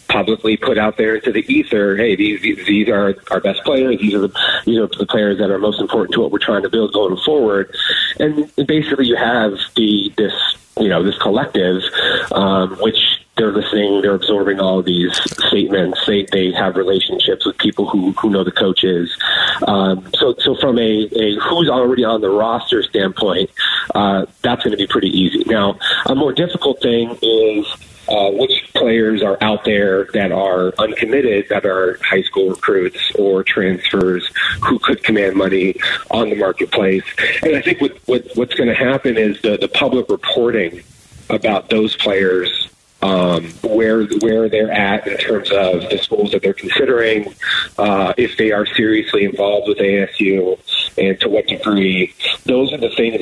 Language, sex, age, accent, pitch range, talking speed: English, male, 30-49, American, 95-125 Hz, 180 wpm